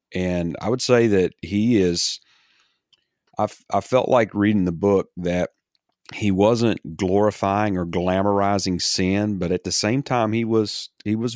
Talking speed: 165 wpm